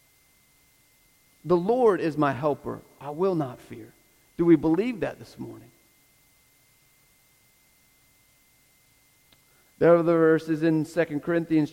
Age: 40-59